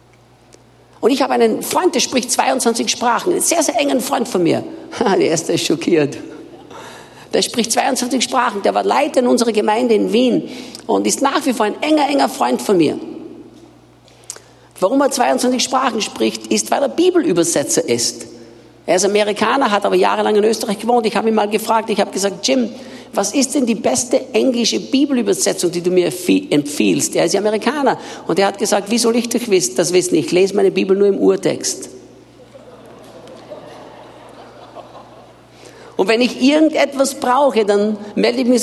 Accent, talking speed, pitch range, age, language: German, 170 wpm, 195-275 Hz, 50-69, German